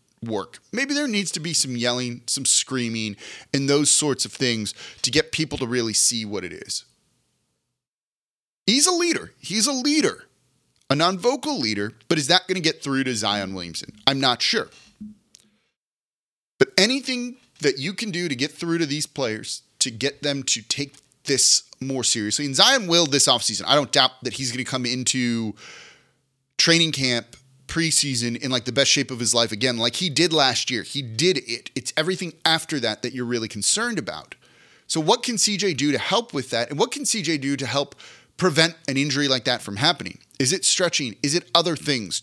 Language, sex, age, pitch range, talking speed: English, male, 30-49, 120-165 Hz, 200 wpm